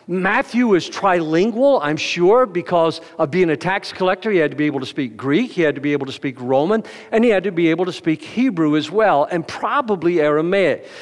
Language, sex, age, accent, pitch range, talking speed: English, male, 50-69, American, 165-210 Hz, 225 wpm